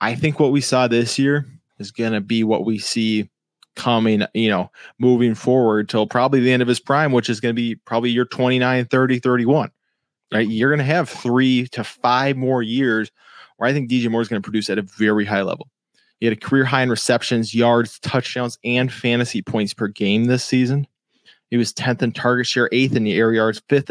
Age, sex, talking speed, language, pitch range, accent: 20-39, male, 210 wpm, English, 110-130 Hz, American